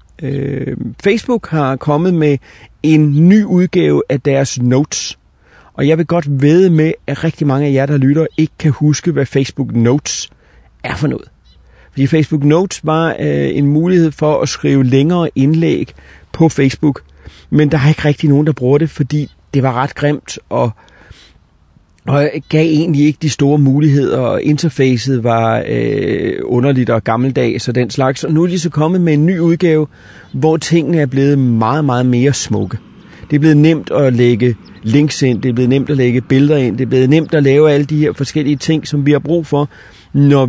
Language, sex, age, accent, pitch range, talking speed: Danish, male, 30-49, native, 125-155 Hz, 190 wpm